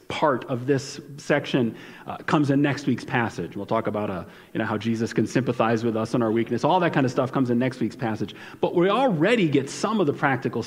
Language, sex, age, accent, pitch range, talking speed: English, male, 40-59, American, 140-195 Hz, 240 wpm